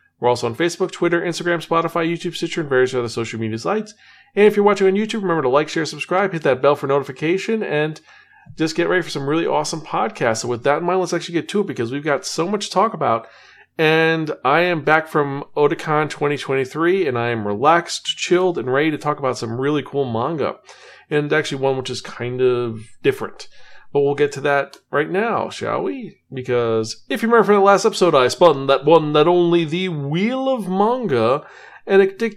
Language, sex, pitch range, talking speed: English, male, 135-185 Hz, 215 wpm